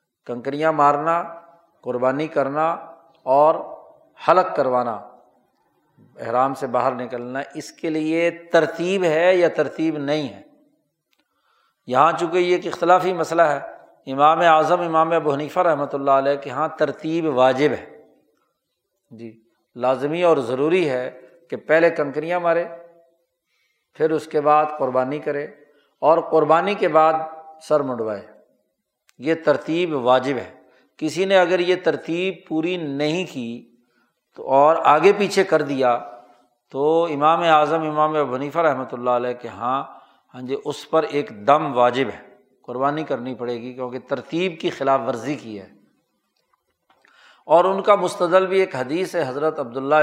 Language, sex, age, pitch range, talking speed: Urdu, male, 50-69, 130-165 Hz, 140 wpm